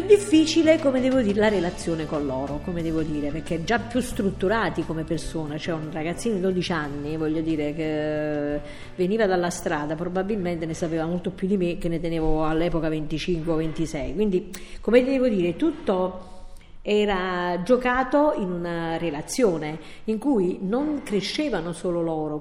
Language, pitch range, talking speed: Italian, 165-230 Hz, 155 wpm